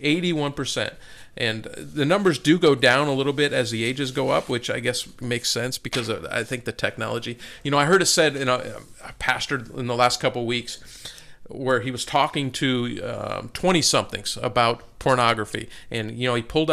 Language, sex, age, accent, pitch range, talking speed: English, male, 40-59, American, 120-145 Hz, 205 wpm